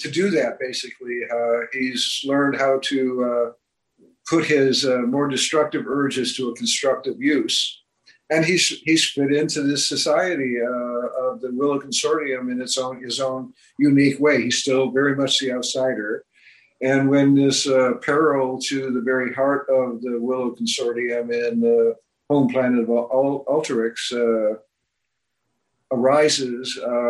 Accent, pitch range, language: American, 120-140 Hz, English